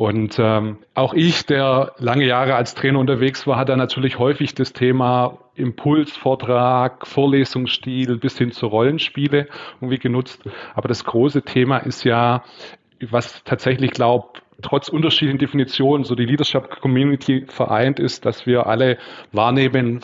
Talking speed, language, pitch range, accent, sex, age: 140 wpm, German, 115-135 Hz, German, male, 30-49